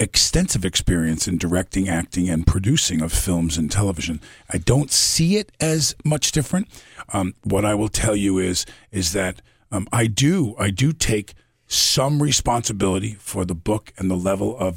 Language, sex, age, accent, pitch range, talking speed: English, male, 50-69, American, 95-120 Hz, 170 wpm